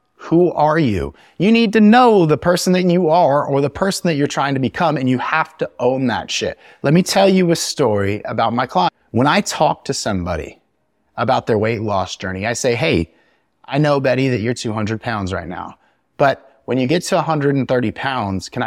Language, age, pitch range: English, 30-49, 120-155 Hz